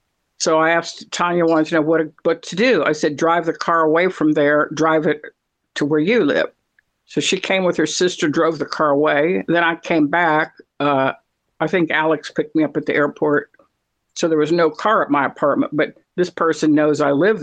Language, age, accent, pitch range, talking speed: English, 60-79, American, 155-180 Hz, 220 wpm